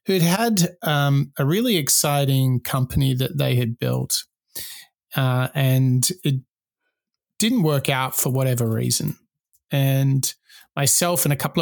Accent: Australian